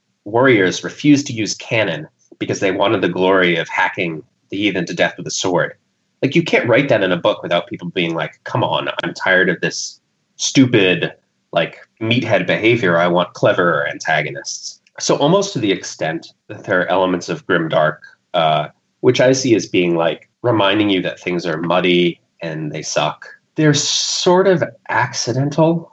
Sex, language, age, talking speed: male, English, 30-49, 175 wpm